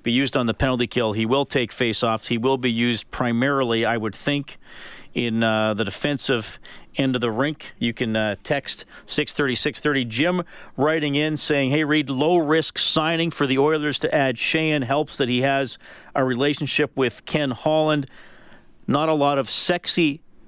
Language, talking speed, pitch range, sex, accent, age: English, 180 wpm, 115-145 Hz, male, American, 40-59